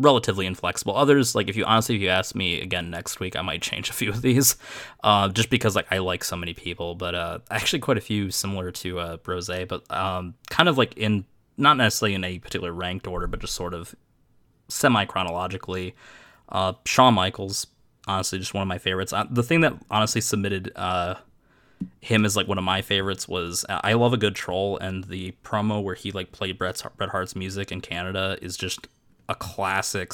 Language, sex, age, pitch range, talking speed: English, male, 20-39, 90-110 Hz, 210 wpm